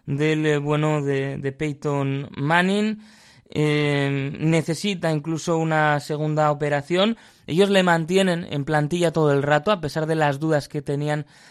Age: 20-39